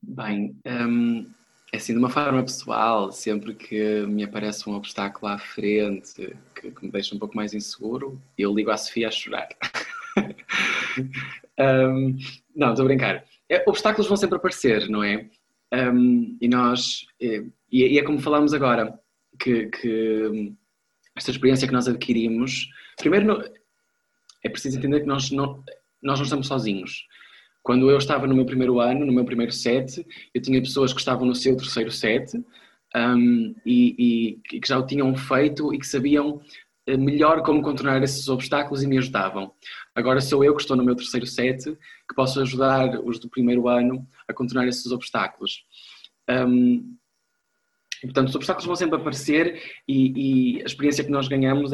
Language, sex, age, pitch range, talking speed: Portuguese, male, 20-39, 120-145 Hz, 155 wpm